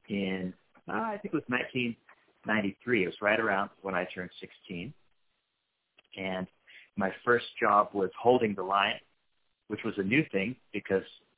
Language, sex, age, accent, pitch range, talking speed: English, male, 30-49, American, 95-115 Hz, 150 wpm